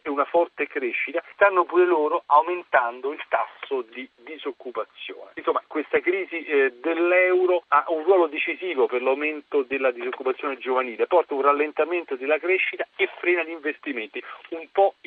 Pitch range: 140-195 Hz